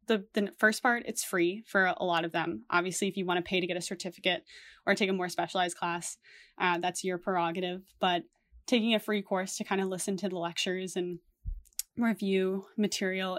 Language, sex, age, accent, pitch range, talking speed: English, female, 20-39, American, 175-200 Hz, 205 wpm